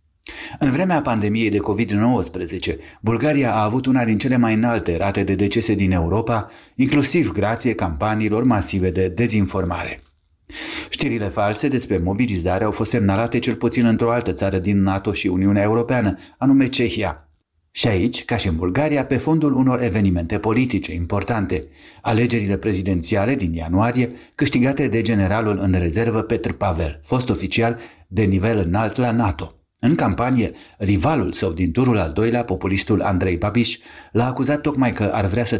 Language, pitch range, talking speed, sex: Romanian, 95-120 Hz, 155 wpm, male